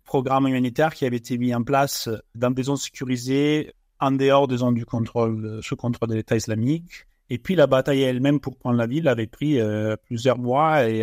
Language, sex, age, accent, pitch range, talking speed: French, male, 30-49, French, 120-140 Hz, 205 wpm